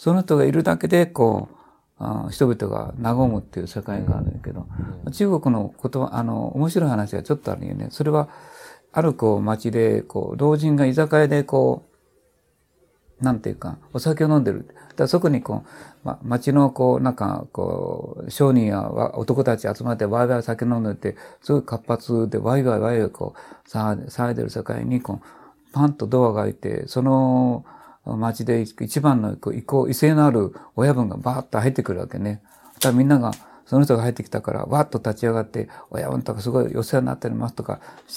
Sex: male